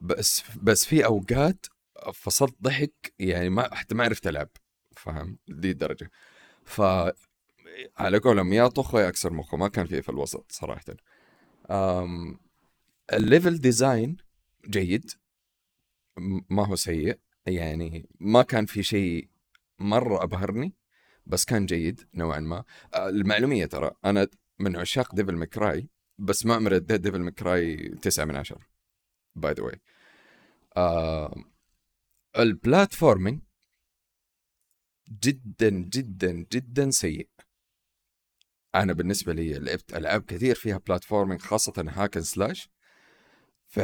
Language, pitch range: Arabic, 90-110 Hz